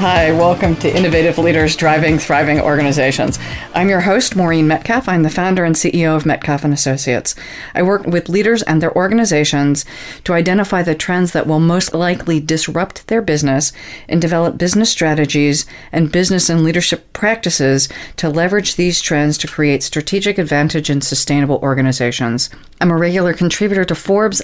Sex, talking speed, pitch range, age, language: female, 160 wpm, 150-175 Hz, 40-59, English